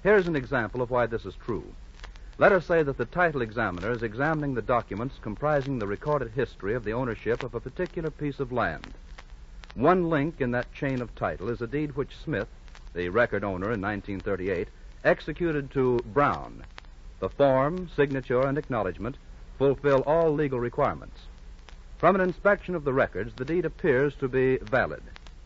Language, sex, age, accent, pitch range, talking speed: English, male, 60-79, American, 110-145 Hz, 170 wpm